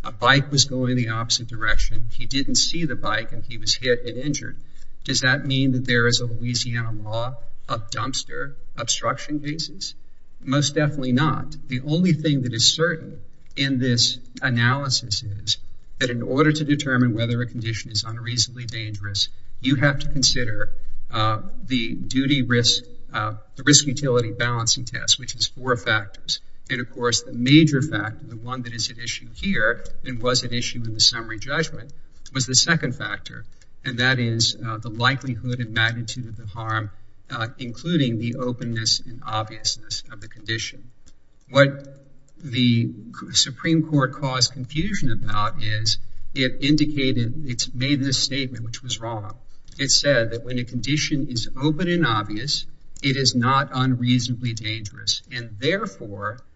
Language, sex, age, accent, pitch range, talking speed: English, male, 50-69, American, 115-135 Hz, 160 wpm